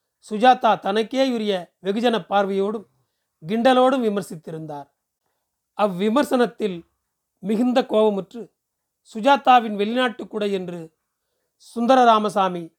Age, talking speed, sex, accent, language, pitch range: 40-59, 70 wpm, male, native, Tamil, 195-235 Hz